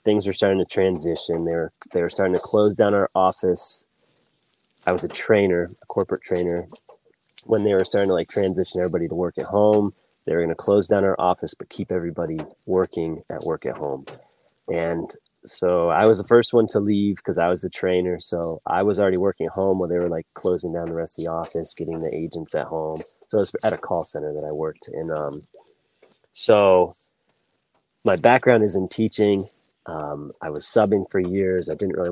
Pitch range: 85-105 Hz